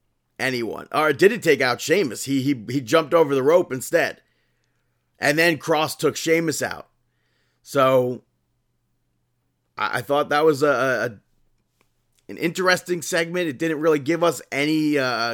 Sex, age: male, 30-49